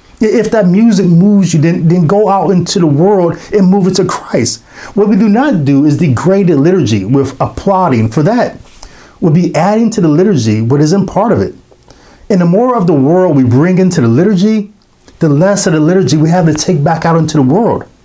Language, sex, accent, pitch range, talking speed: English, male, American, 120-175 Hz, 220 wpm